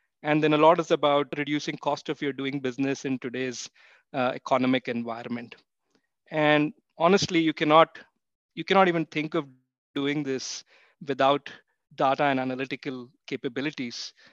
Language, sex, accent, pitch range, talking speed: English, male, Indian, 135-150 Hz, 135 wpm